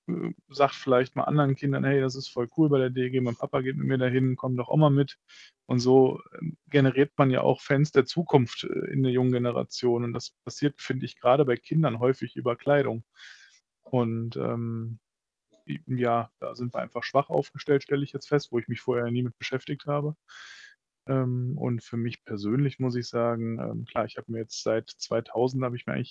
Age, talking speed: 20-39, 200 wpm